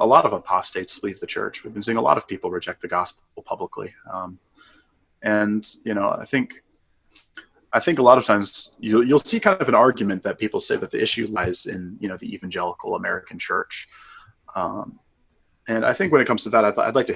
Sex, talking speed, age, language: male, 225 wpm, 20-39, English